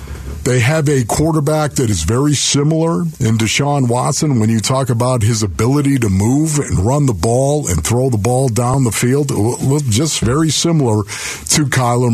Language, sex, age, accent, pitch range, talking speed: English, male, 50-69, American, 110-145 Hz, 175 wpm